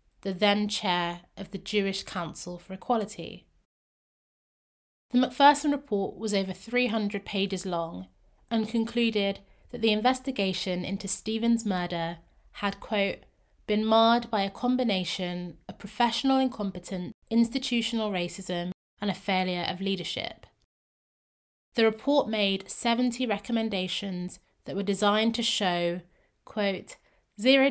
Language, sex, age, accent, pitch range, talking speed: English, female, 20-39, British, 190-235 Hz, 115 wpm